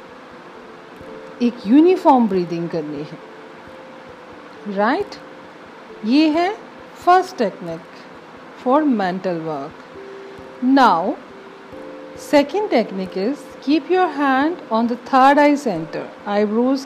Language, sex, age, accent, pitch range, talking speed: Hindi, female, 50-69, native, 185-275 Hz, 95 wpm